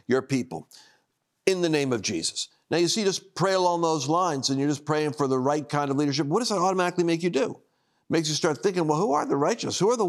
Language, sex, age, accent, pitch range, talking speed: English, male, 50-69, American, 155-235 Hz, 275 wpm